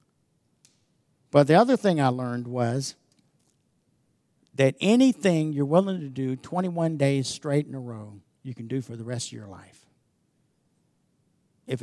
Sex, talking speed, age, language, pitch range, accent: male, 145 wpm, 50-69, English, 135-175 Hz, American